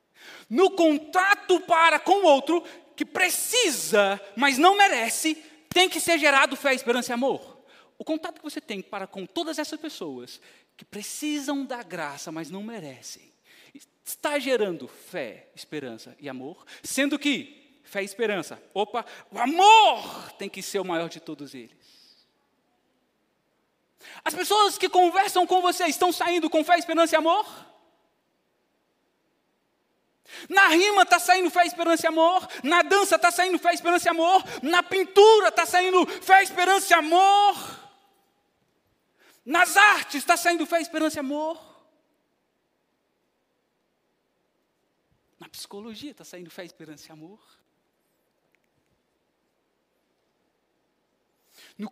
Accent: Brazilian